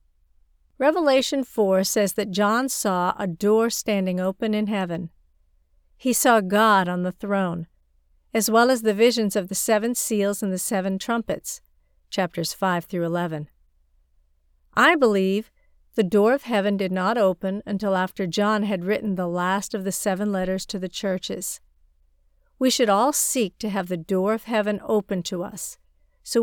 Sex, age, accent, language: female, 50-69, American, Chinese